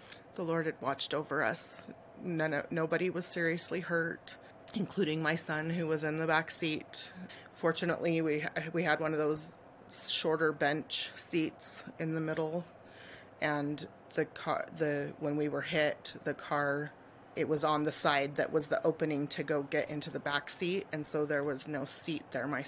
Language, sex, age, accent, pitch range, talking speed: English, female, 30-49, American, 140-160 Hz, 180 wpm